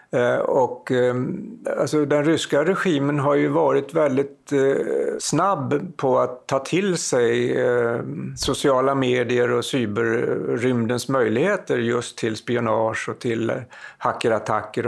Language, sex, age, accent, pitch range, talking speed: English, male, 60-79, Swedish, 120-145 Hz, 100 wpm